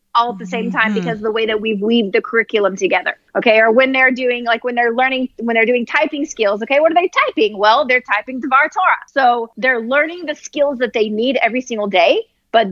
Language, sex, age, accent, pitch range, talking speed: English, female, 30-49, American, 220-270 Hz, 235 wpm